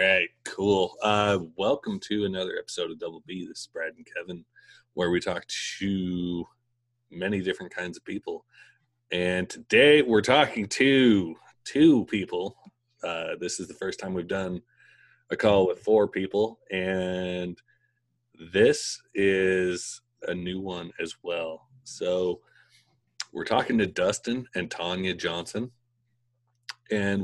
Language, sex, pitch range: English, male, 85-120 Hz